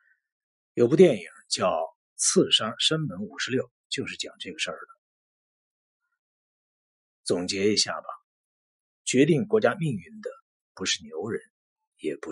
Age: 50-69